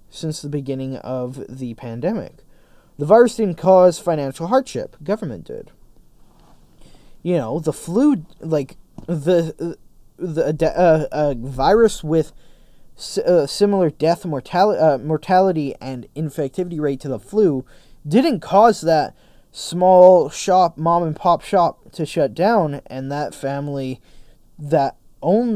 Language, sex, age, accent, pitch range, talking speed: English, male, 20-39, American, 135-185 Hz, 125 wpm